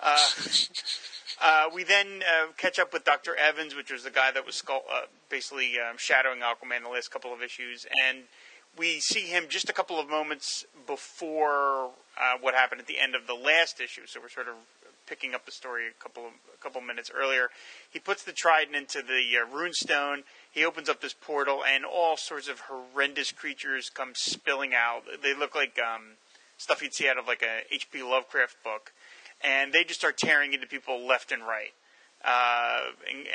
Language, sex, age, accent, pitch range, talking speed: English, male, 30-49, American, 125-155 Hz, 195 wpm